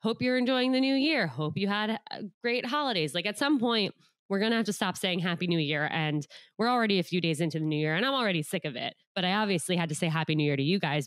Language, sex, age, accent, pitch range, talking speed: English, female, 20-39, American, 155-190 Hz, 285 wpm